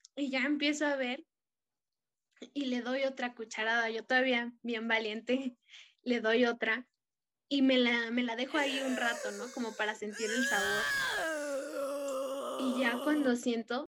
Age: 10-29